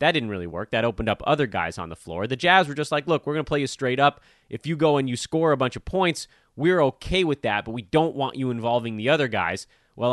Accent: American